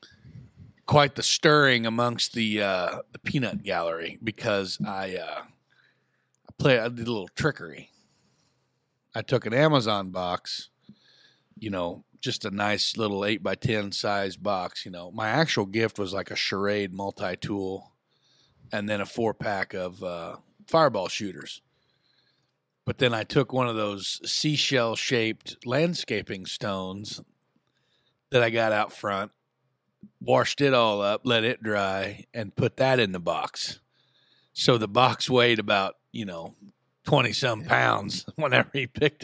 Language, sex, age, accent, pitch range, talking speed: English, male, 40-59, American, 100-155 Hz, 140 wpm